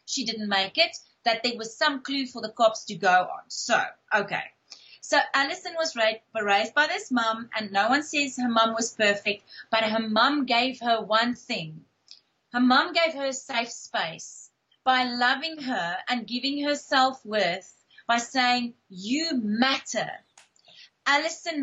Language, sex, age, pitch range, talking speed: English, female, 30-49, 215-270 Hz, 165 wpm